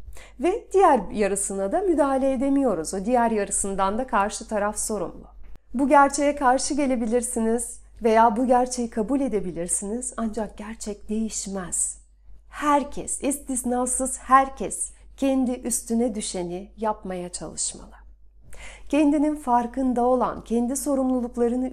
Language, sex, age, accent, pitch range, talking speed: Turkish, female, 40-59, native, 205-255 Hz, 105 wpm